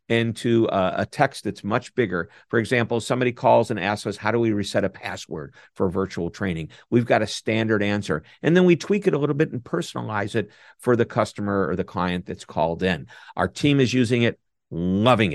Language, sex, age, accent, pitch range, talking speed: English, male, 50-69, American, 100-135 Hz, 205 wpm